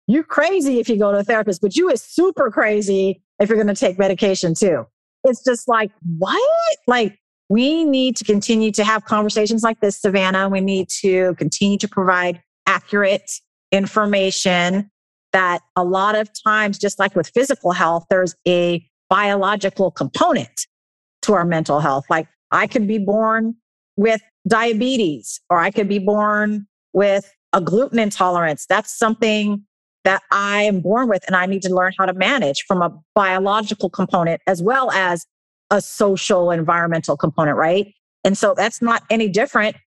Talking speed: 165 wpm